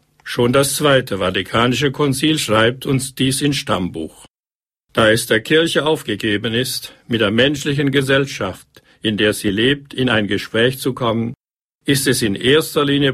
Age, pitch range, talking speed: 60-79, 110-140 Hz, 155 wpm